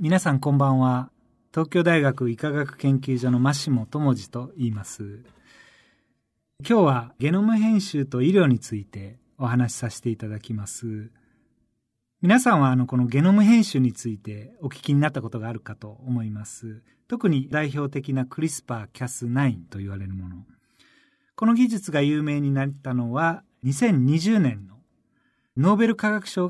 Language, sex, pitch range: Japanese, male, 120-185 Hz